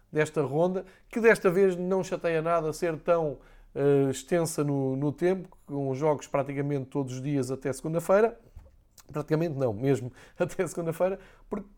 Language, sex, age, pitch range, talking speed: Portuguese, male, 20-39, 135-165 Hz, 150 wpm